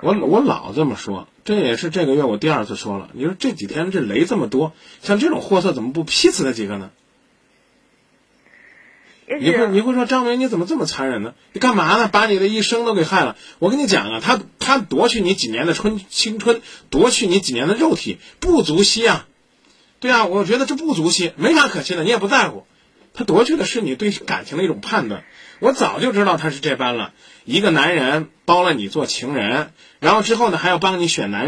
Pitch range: 165-235 Hz